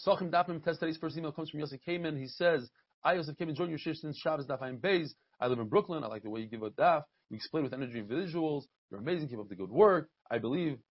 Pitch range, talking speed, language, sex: 145-195 Hz, 265 wpm, English, male